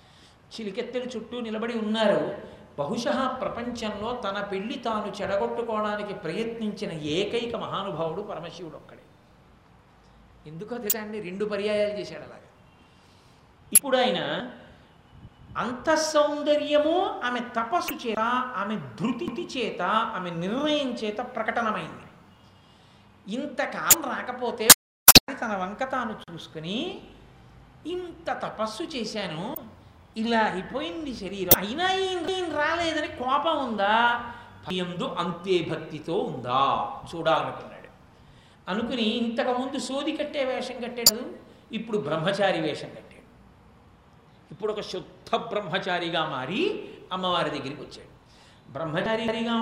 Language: Telugu